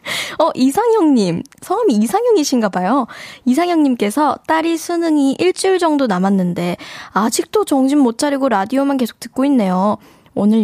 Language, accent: Korean, native